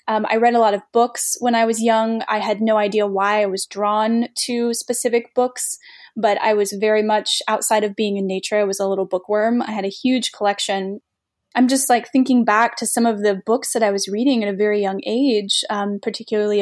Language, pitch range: English, 200-235 Hz